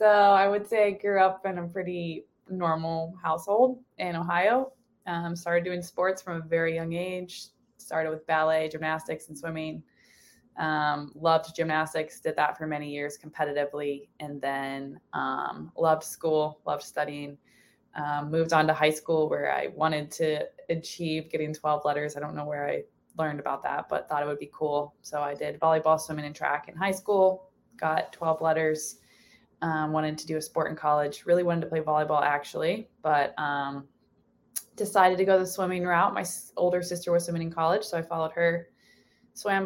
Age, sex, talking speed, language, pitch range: 20-39, female, 185 wpm, English, 150-170 Hz